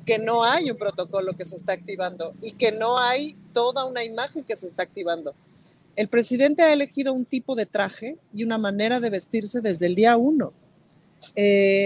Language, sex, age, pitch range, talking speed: Spanish, female, 40-59, 200-260 Hz, 190 wpm